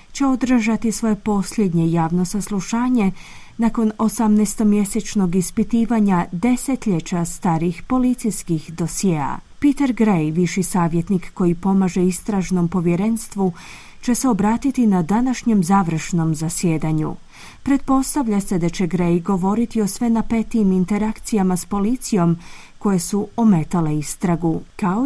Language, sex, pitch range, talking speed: Croatian, female, 175-230 Hz, 110 wpm